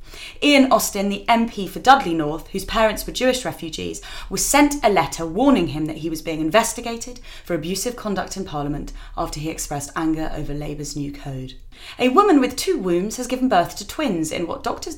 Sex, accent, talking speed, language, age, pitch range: female, British, 195 wpm, English, 30-49, 160-270 Hz